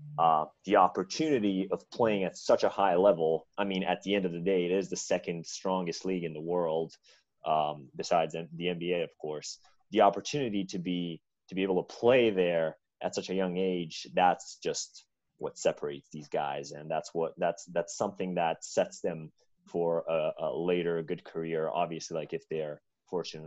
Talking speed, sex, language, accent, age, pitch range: 190 wpm, male, English, American, 30-49, 85-105 Hz